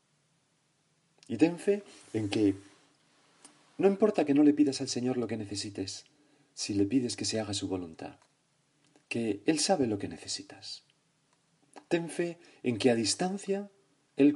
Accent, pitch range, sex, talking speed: Spanish, 100-150 Hz, male, 155 wpm